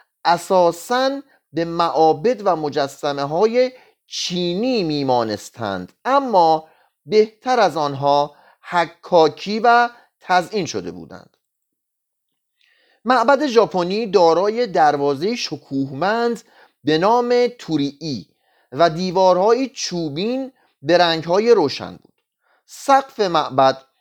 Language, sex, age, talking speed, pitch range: Persian, male, 40-59, 85 wpm, 160-240 Hz